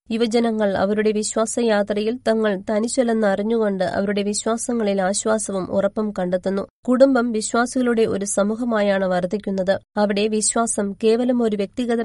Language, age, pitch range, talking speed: Malayalam, 20-39, 205-235 Hz, 105 wpm